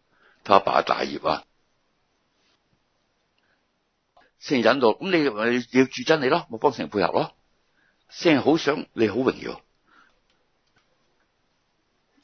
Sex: male